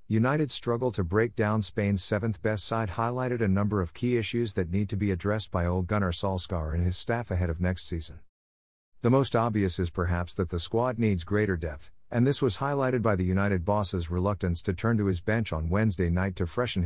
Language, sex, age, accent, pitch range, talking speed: English, male, 50-69, American, 90-115 Hz, 215 wpm